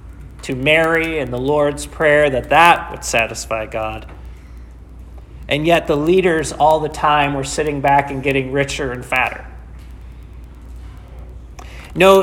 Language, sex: English, male